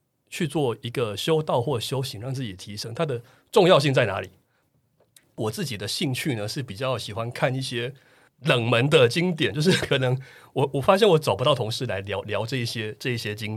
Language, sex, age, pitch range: Chinese, male, 30-49, 110-155 Hz